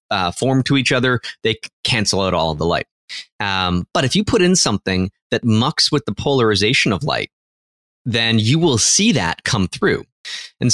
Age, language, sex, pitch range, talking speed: 30-49, English, male, 100-130 Hz, 190 wpm